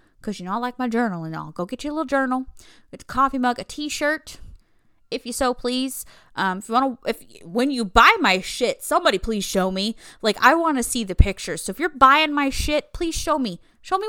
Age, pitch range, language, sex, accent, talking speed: 20-39, 200-290 Hz, English, female, American, 240 wpm